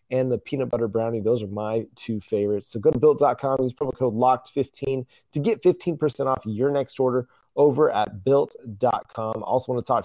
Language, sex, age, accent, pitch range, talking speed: English, male, 30-49, American, 110-140 Hz, 195 wpm